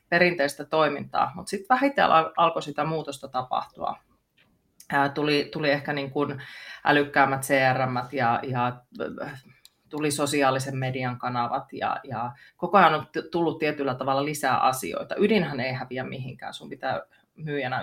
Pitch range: 135-160 Hz